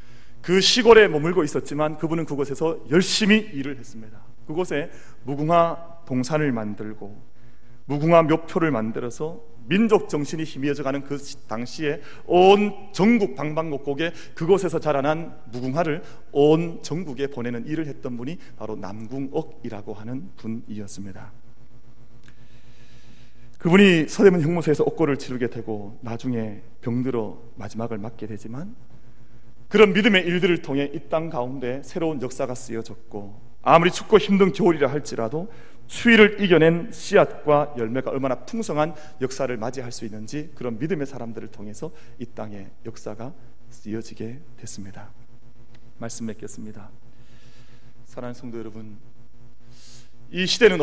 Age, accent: 40-59, native